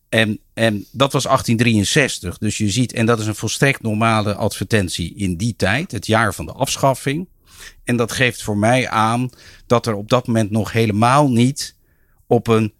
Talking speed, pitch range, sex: 185 wpm, 95-120 Hz, male